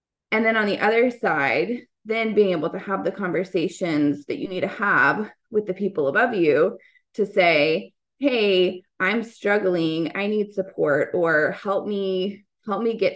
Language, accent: English, American